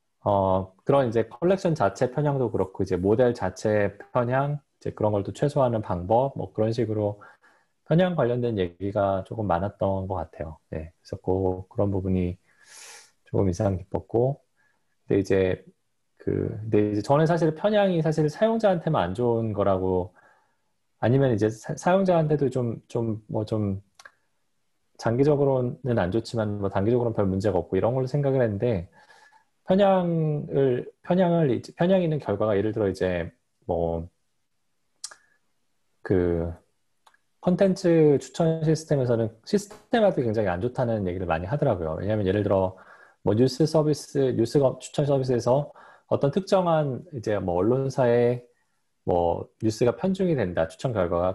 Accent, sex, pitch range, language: native, male, 100-145 Hz, Korean